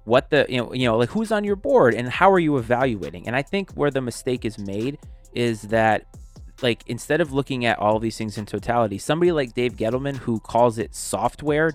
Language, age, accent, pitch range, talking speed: English, 20-39, American, 110-140 Hz, 230 wpm